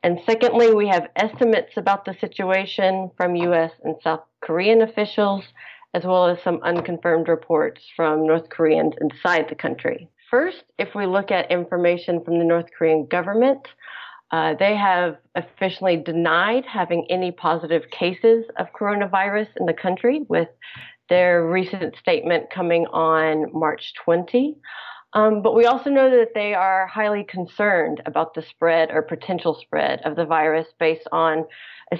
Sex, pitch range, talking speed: female, 170-205 Hz, 150 wpm